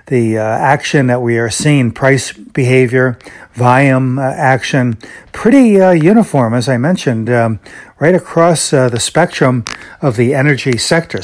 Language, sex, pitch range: English, male, 120-145 Hz